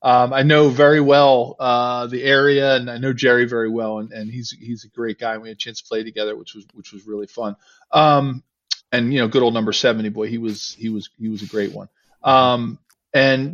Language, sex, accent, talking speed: English, male, American, 240 wpm